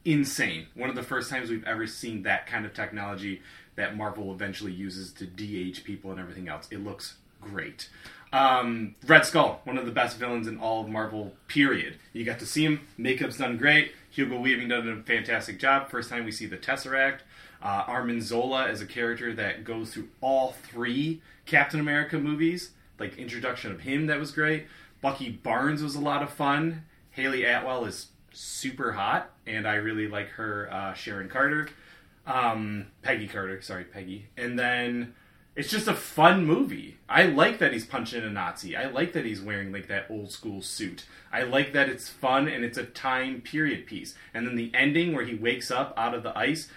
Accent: American